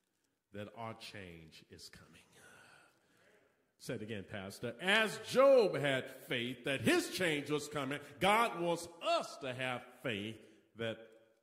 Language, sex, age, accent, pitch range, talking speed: English, male, 50-69, American, 110-160 Hz, 130 wpm